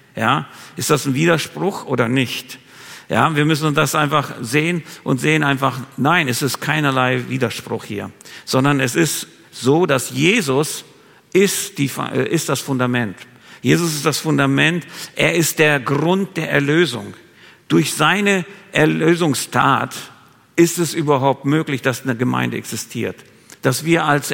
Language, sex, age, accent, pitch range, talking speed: German, male, 50-69, German, 130-160 Hz, 140 wpm